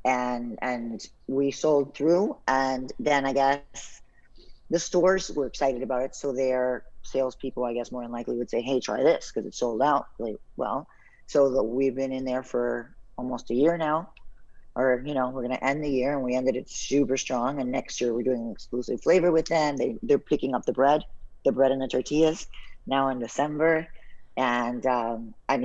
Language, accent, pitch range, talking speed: English, American, 125-140 Hz, 200 wpm